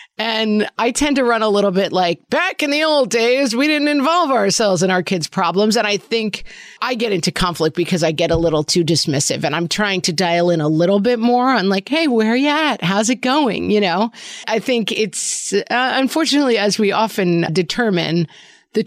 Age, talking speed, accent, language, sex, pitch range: 40-59, 215 wpm, American, English, female, 165-220 Hz